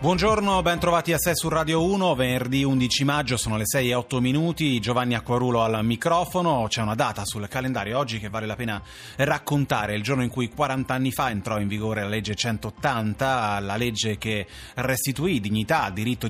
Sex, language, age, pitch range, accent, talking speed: male, Italian, 30-49, 110-135 Hz, native, 190 wpm